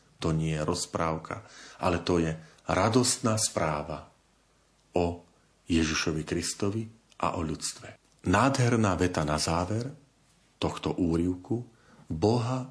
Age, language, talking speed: 40-59, Slovak, 105 wpm